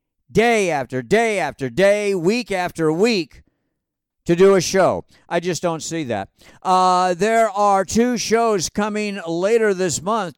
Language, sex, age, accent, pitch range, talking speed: English, male, 50-69, American, 165-205 Hz, 150 wpm